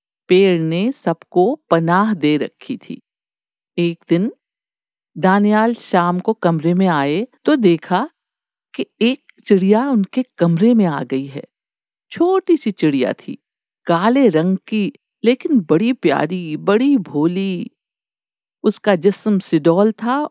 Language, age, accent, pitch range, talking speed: Hindi, 50-69, native, 170-255 Hz, 125 wpm